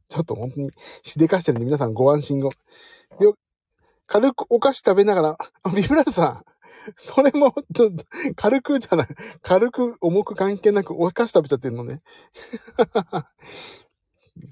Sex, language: male, Japanese